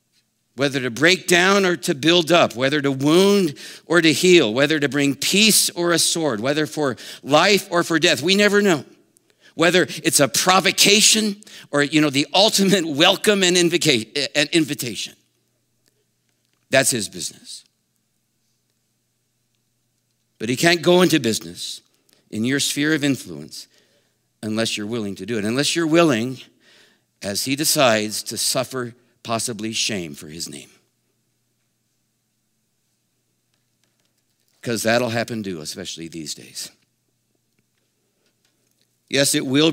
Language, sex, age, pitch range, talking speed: English, male, 50-69, 115-160 Hz, 130 wpm